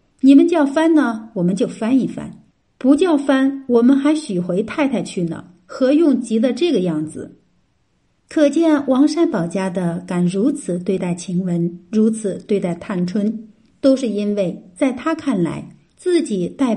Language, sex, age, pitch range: Chinese, female, 50-69, 185-275 Hz